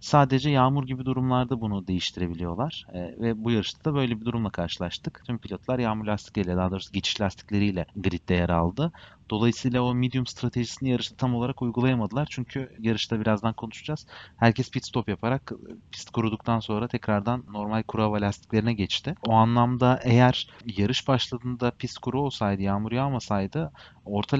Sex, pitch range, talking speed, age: male, 100-125 Hz, 150 wpm, 30-49